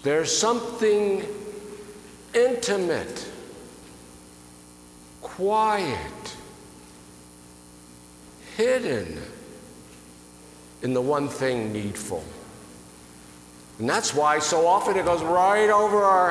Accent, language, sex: American, English, male